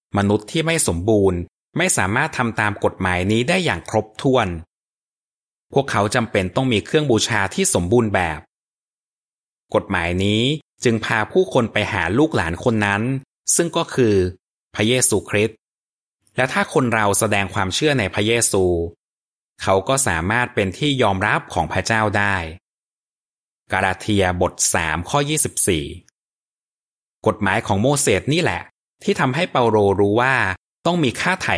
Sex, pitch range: male, 95-130 Hz